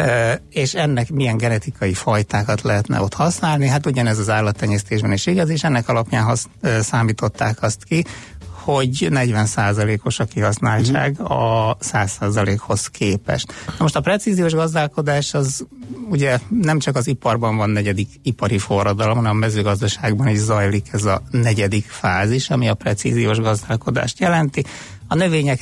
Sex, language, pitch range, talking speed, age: male, Hungarian, 105-140 Hz, 145 wpm, 60-79